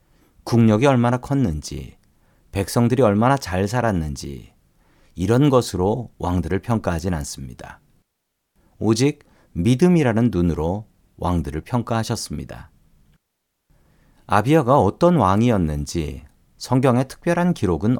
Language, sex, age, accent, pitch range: Korean, male, 40-59, native, 85-125 Hz